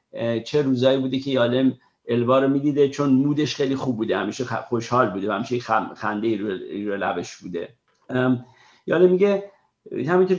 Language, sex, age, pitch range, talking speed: Persian, male, 50-69, 115-135 Hz, 145 wpm